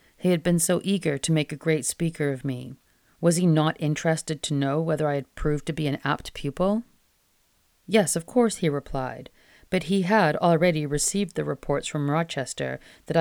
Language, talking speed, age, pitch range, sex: English, 190 wpm, 40-59, 145-170 Hz, female